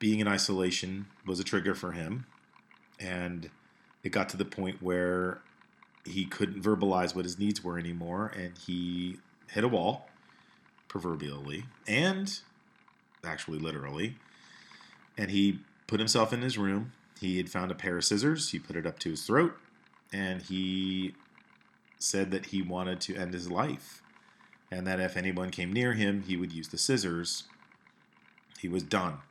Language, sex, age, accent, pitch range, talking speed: English, male, 40-59, American, 90-100 Hz, 160 wpm